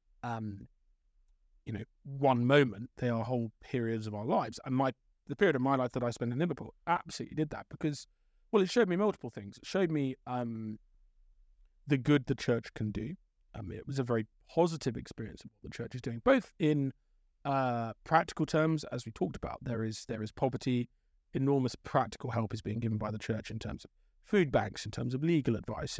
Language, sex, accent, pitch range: English, male, British, 110-140 Hz